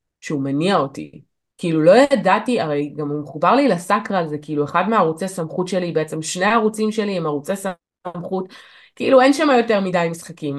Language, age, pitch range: Hebrew, 20-39, 175-255 Hz